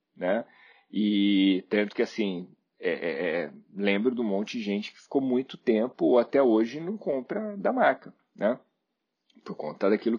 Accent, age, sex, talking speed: Brazilian, 40-59, male, 165 wpm